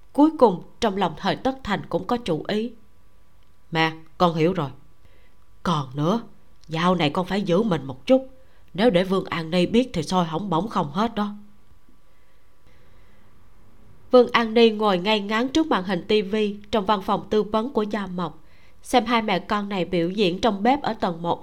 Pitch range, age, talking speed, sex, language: 165-230 Hz, 20-39, 190 wpm, female, Vietnamese